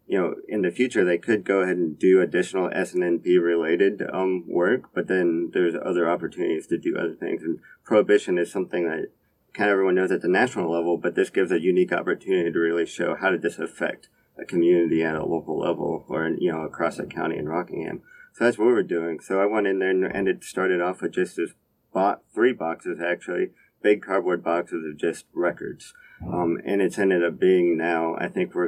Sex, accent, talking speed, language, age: male, American, 220 wpm, English, 40-59